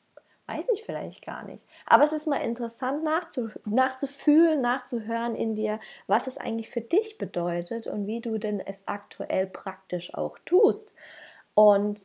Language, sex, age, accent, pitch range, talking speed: German, female, 20-39, German, 205-260 Hz, 150 wpm